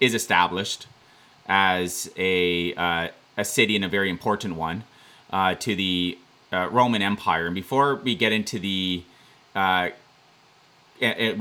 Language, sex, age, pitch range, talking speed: English, male, 30-49, 95-125 Hz, 130 wpm